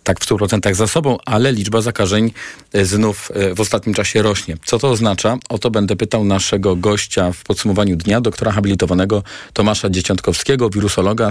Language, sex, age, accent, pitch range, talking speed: Polish, male, 40-59, native, 100-120 Hz, 160 wpm